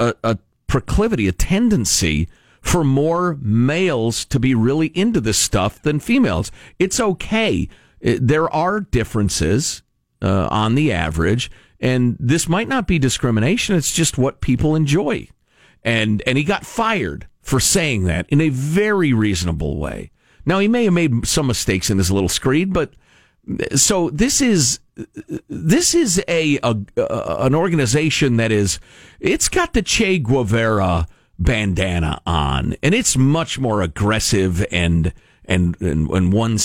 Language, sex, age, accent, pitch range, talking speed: English, male, 50-69, American, 95-155 Hz, 145 wpm